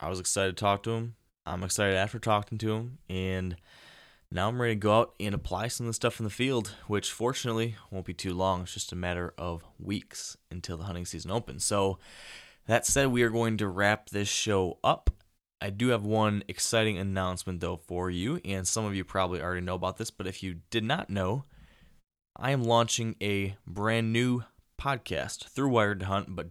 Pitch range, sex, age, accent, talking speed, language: 95-115 Hz, male, 20-39, American, 210 wpm, English